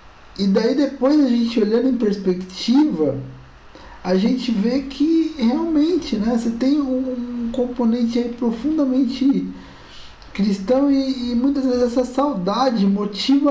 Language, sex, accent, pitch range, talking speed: Portuguese, male, Brazilian, 185-250 Hz, 125 wpm